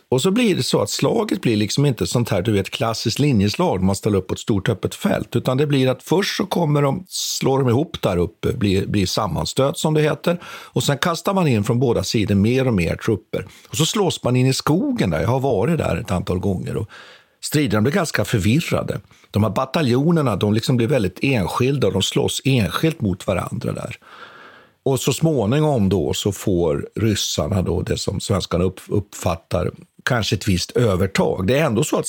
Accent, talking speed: native, 210 wpm